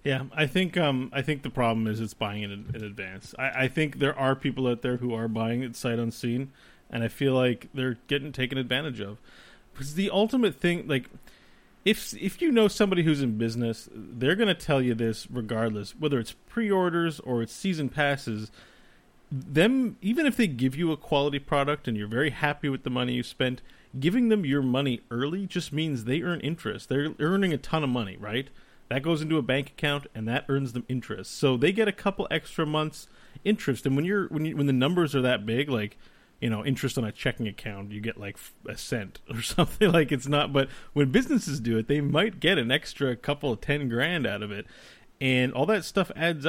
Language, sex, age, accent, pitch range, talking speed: English, male, 30-49, American, 120-155 Hz, 220 wpm